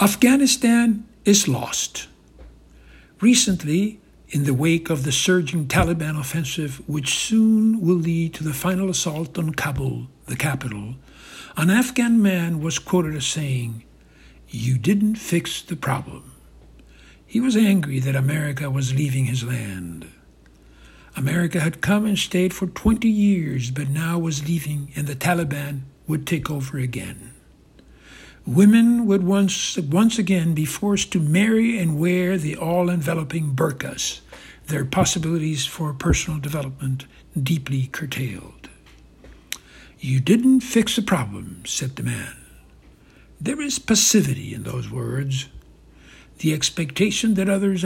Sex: male